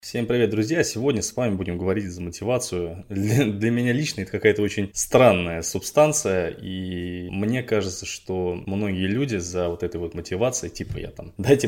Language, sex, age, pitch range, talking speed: Russian, male, 20-39, 95-115 Hz, 175 wpm